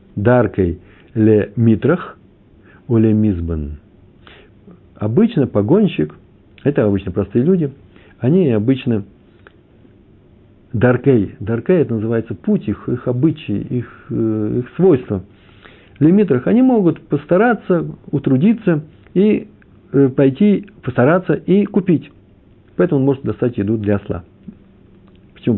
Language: Russian